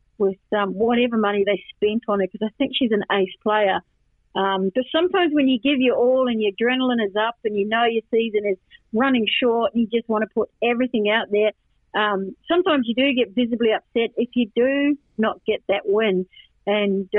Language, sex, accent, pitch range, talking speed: English, female, Australian, 205-255 Hz, 210 wpm